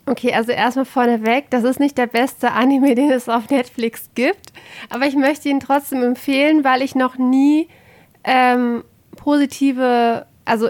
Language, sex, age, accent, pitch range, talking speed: German, female, 20-39, German, 225-260 Hz, 155 wpm